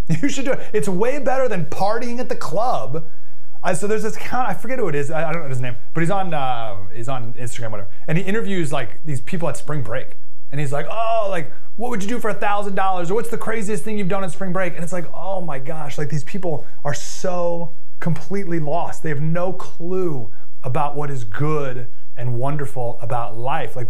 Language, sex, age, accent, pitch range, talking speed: English, male, 30-49, American, 150-220 Hz, 230 wpm